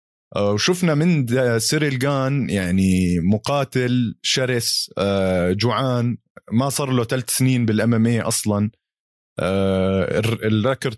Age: 20-39